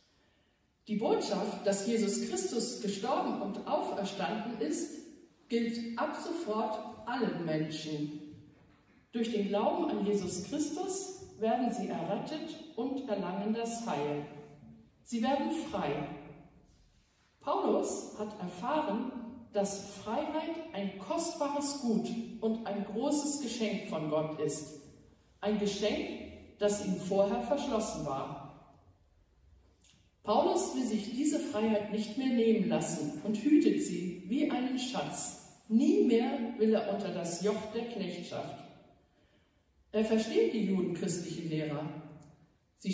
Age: 50-69